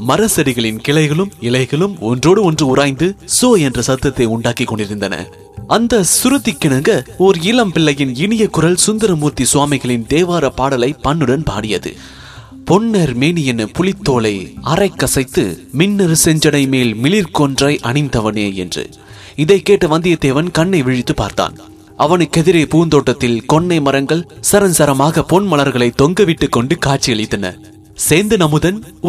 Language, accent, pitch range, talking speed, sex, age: English, Indian, 130-185 Hz, 105 wpm, male, 30-49